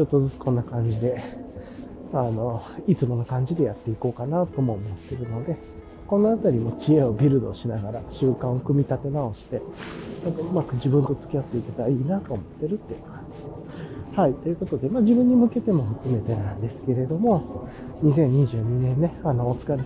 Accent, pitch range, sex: native, 115-165 Hz, male